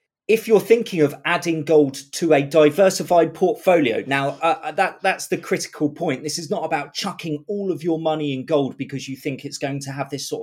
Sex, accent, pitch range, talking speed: male, British, 130-160 Hz, 215 wpm